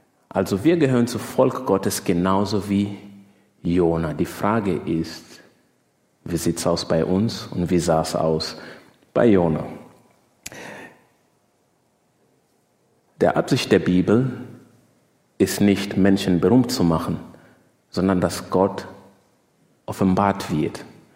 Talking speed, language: 115 wpm, German